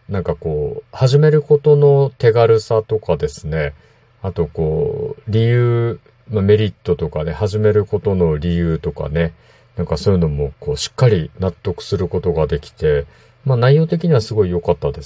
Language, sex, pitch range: Japanese, male, 90-125 Hz